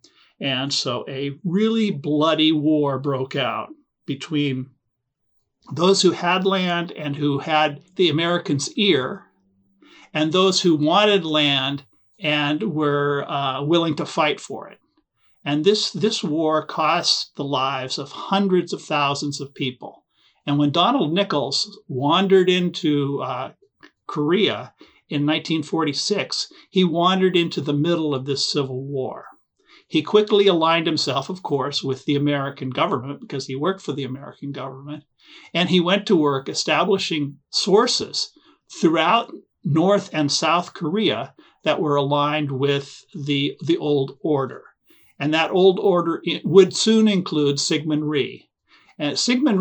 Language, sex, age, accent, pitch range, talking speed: English, male, 50-69, American, 140-185 Hz, 135 wpm